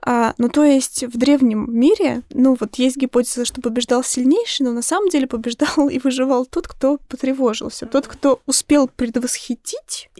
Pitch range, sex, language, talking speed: 245-285 Hz, female, Russian, 165 wpm